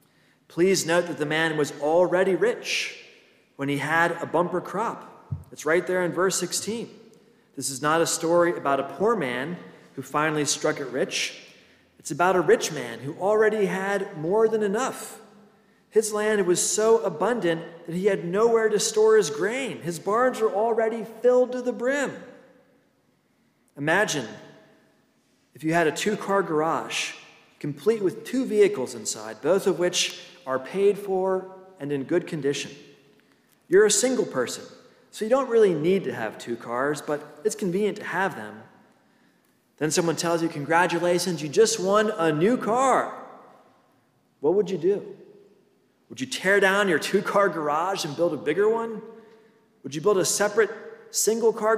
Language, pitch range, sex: English, 165-220 Hz, male